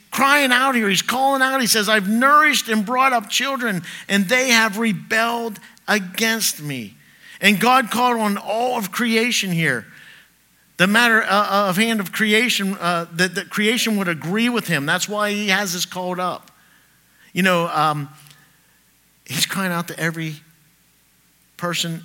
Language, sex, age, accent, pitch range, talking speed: English, male, 50-69, American, 135-205 Hz, 160 wpm